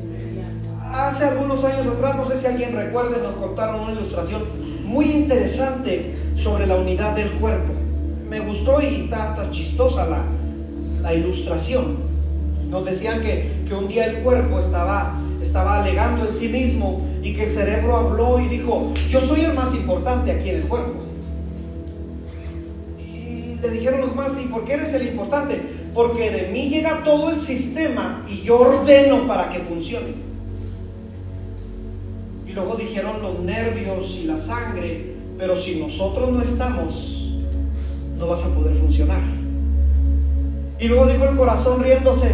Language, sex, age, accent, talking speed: Spanish, male, 40-59, Mexican, 150 wpm